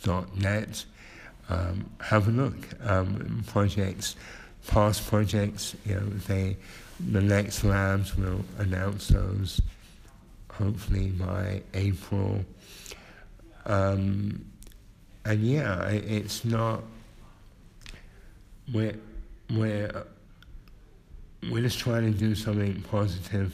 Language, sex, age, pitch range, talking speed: English, male, 60-79, 95-105 Hz, 90 wpm